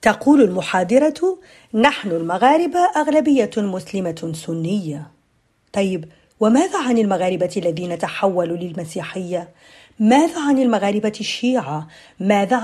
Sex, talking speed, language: female, 90 wpm, Arabic